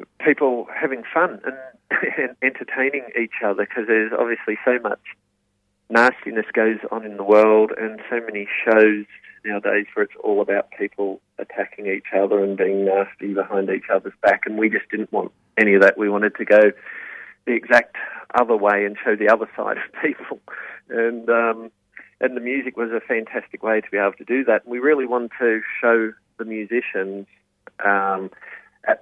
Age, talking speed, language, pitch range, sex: 40-59, 180 wpm, English, 100-115 Hz, male